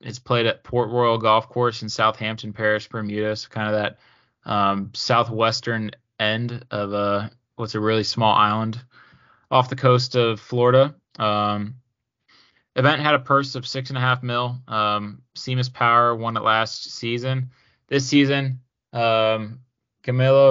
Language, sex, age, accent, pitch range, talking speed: English, male, 20-39, American, 110-125 Hz, 150 wpm